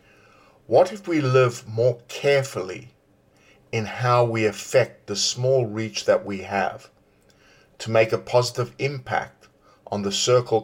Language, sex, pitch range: English, male, 100-125 Hz